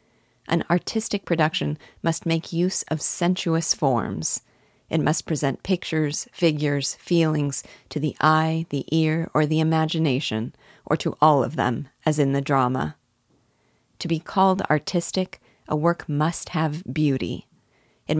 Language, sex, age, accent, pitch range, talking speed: English, female, 40-59, American, 140-170 Hz, 140 wpm